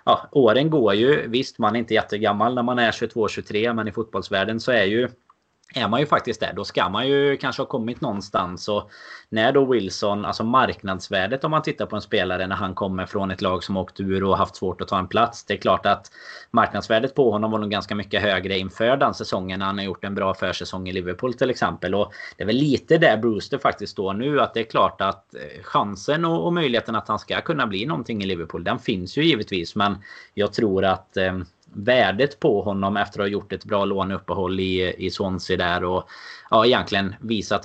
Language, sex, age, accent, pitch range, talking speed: Swedish, male, 20-39, native, 95-110 Hz, 220 wpm